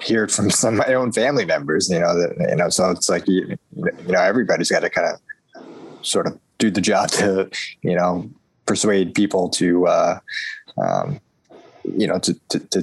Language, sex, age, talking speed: English, male, 20-39, 200 wpm